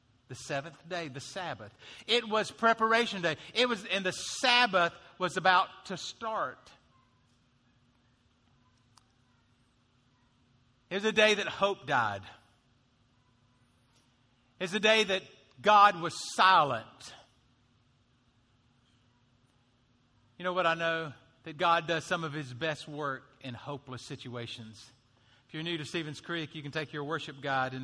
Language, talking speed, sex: English, 130 wpm, male